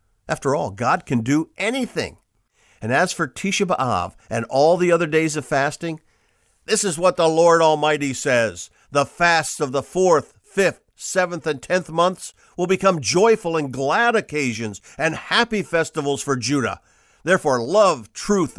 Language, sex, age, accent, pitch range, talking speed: English, male, 50-69, American, 110-165 Hz, 160 wpm